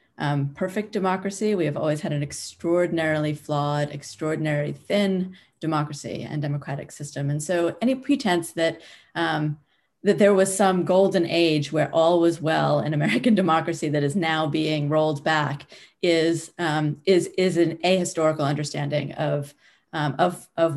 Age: 30-49